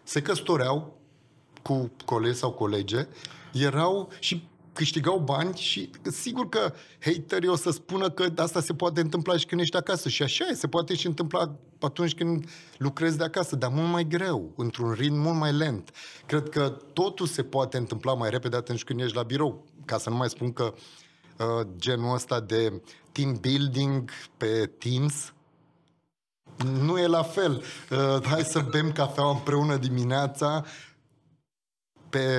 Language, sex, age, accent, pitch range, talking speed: Romanian, male, 30-49, native, 130-165 Hz, 155 wpm